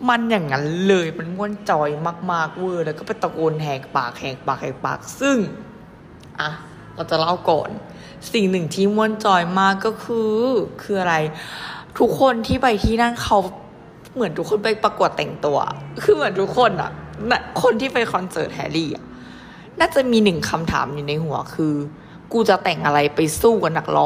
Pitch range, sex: 155-210 Hz, female